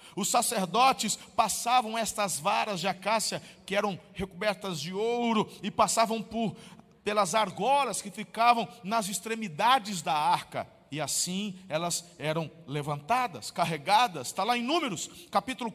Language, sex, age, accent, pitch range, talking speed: Portuguese, male, 40-59, Brazilian, 175-270 Hz, 130 wpm